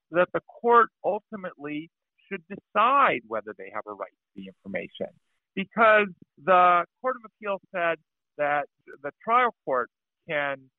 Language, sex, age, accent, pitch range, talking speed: English, male, 50-69, American, 130-185 Hz, 140 wpm